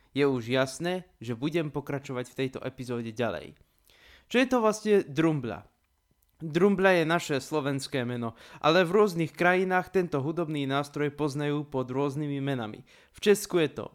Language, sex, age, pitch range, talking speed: Slovak, male, 20-39, 130-175 Hz, 150 wpm